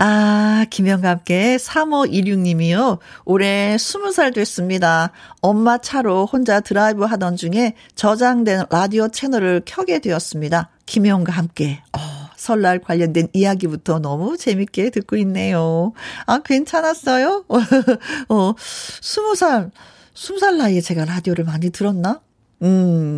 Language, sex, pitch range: Korean, female, 180-260 Hz